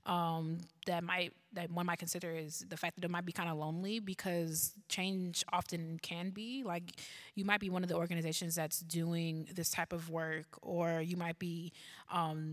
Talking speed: 195 wpm